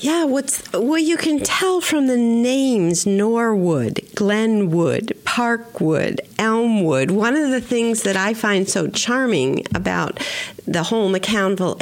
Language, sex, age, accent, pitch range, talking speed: English, female, 50-69, American, 200-265 Hz, 130 wpm